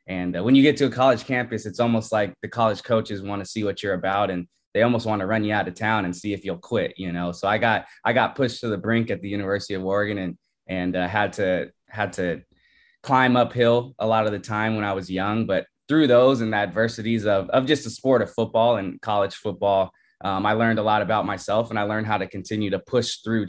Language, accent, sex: English, American, male